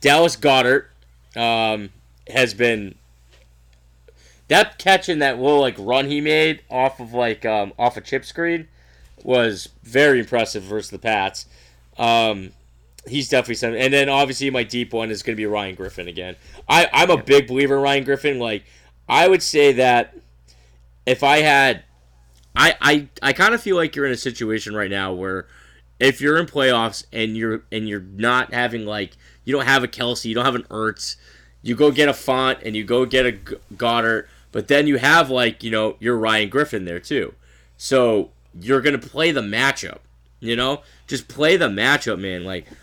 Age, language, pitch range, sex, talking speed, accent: 20-39, English, 100-140 Hz, male, 185 wpm, American